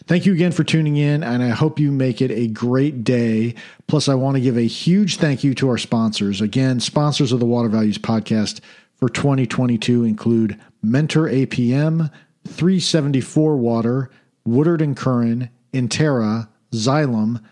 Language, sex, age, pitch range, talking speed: English, male, 50-69, 110-150 Hz, 160 wpm